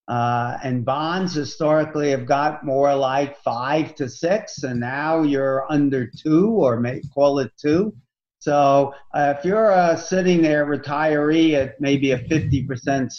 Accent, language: American, English